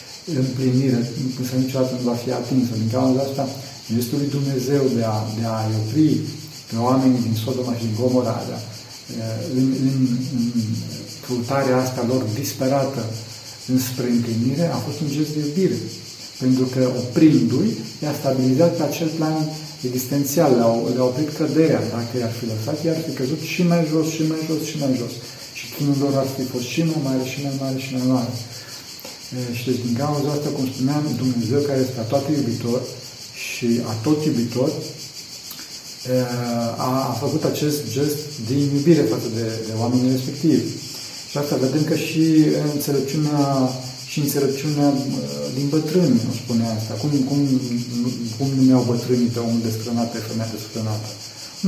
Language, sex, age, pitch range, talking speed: Romanian, male, 50-69, 120-145 Hz, 155 wpm